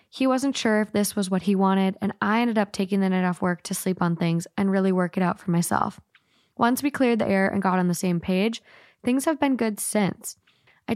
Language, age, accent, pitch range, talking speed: English, 10-29, American, 185-220 Hz, 250 wpm